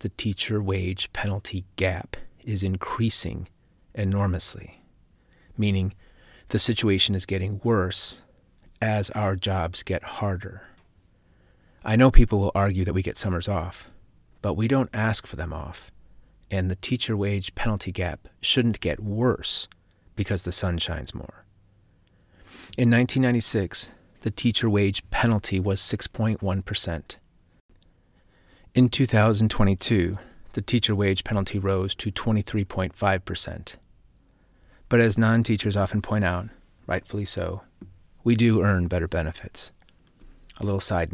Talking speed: 120 wpm